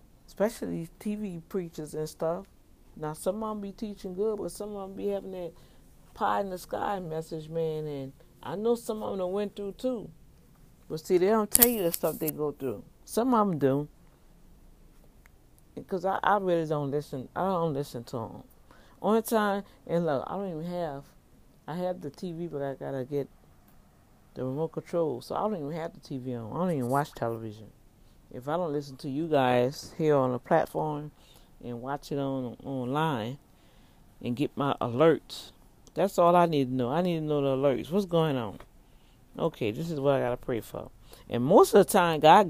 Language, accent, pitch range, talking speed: English, American, 135-185 Hz, 200 wpm